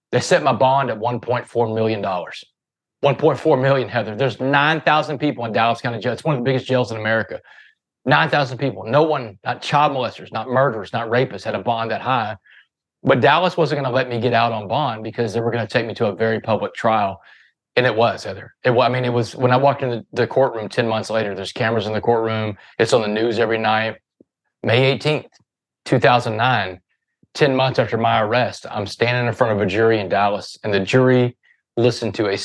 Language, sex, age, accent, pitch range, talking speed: English, male, 30-49, American, 110-130 Hz, 215 wpm